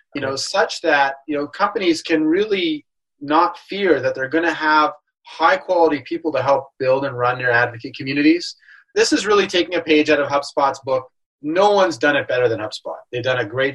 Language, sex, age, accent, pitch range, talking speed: English, male, 30-49, American, 135-175 Hz, 205 wpm